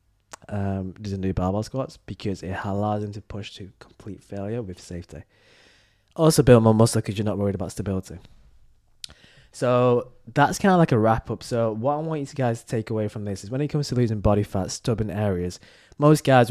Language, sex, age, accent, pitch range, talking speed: English, male, 20-39, British, 100-125 Hz, 205 wpm